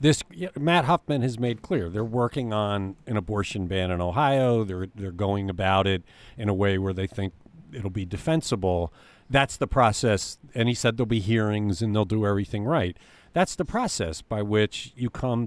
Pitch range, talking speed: 100-145 Hz, 190 wpm